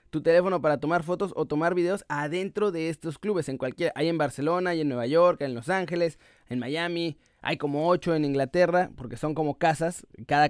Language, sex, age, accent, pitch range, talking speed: Spanish, male, 20-39, Mexican, 140-175 Hz, 210 wpm